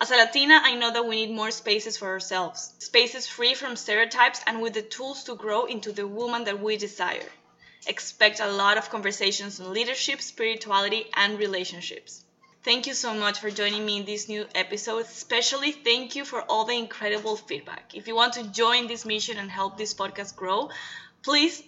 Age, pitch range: 10-29, 200-240 Hz